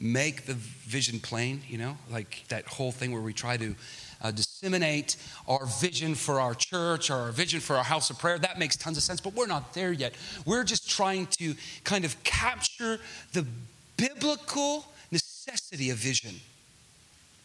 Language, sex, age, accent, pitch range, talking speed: English, male, 40-59, American, 110-150 Hz, 175 wpm